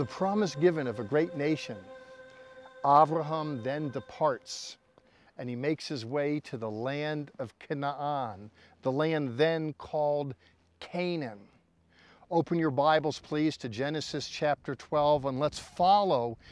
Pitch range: 140-175 Hz